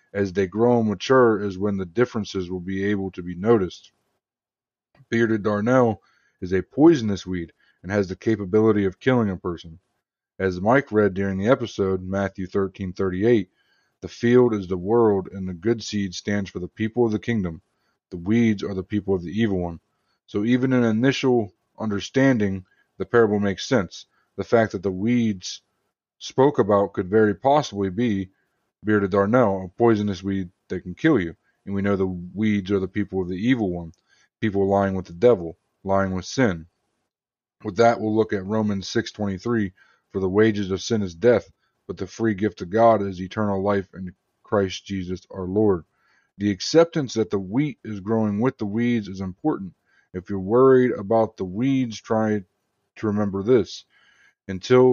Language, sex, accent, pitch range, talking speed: English, male, American, 95-115 Hz, 180 wpm